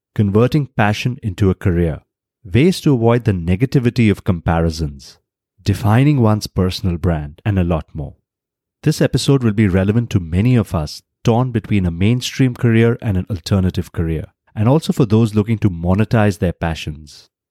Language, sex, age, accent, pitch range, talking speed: English, male, 30-49, Indian, 90-120 Hz, 160 wpm